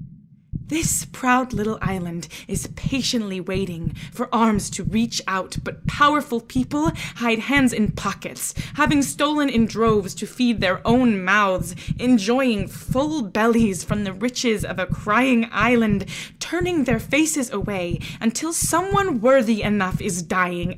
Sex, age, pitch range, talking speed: female, 20-39, 165-220 Hz, 140 wpm